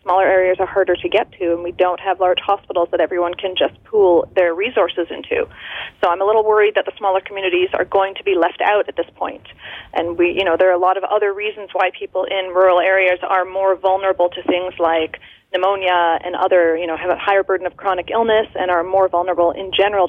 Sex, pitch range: female, 185-220 Hz